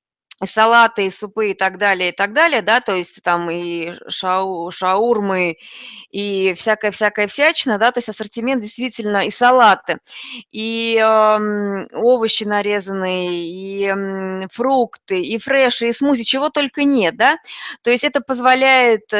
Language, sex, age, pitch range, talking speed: Russian, female, 20-39, 205-250 Hz, 135 wpm